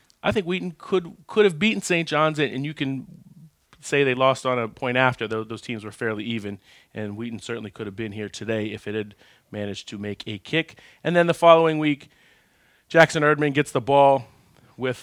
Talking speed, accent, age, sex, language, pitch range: 210 wpm, American, 40-59, male, English, 110-140 Hz